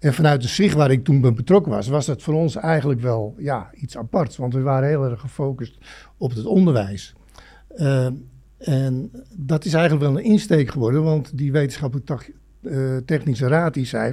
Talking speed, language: 195 wpm, English